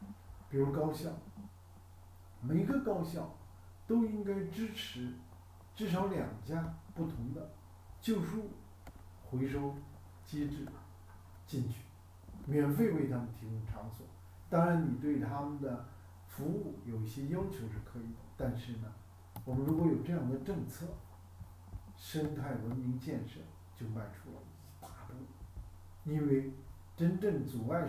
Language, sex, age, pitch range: Chinese, male, 50-69, 90-135 Hz